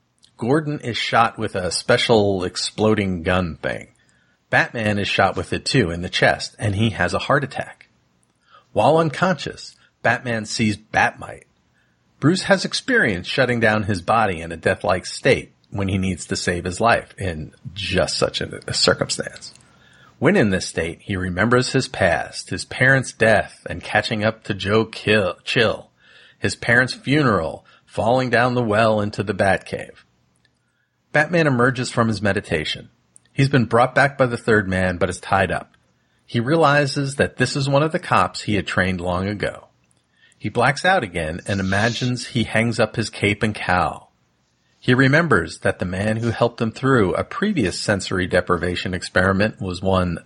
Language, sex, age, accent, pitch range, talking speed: English, male, 40-59, American, 90-125 Hz, 165 wpm